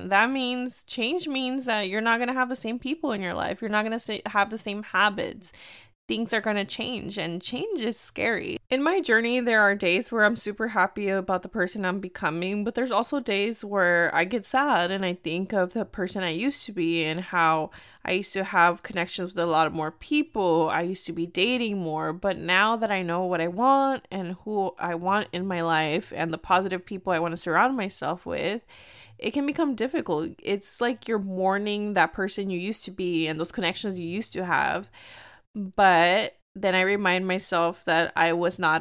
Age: 20-39